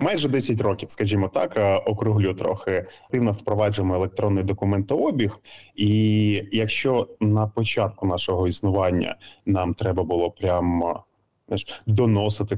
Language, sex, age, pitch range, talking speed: Ukrainian, male, 20-39, 90-110 Hz, 110 wpm